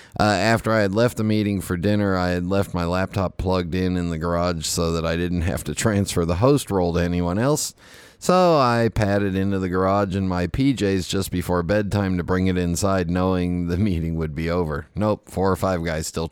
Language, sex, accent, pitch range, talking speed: English, male, American, 85-105 Hz, 220 wpm